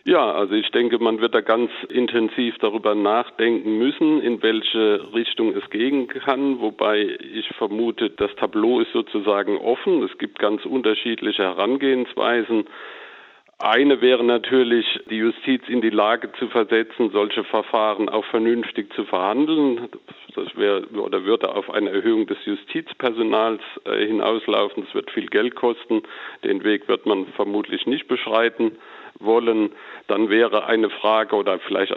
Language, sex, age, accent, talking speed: German, male, 50-69, German, 145 wpm